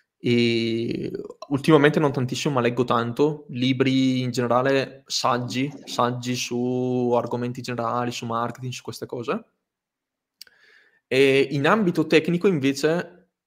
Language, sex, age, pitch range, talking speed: Italian, male, 20-39, 120-145 Hz, 110 wpm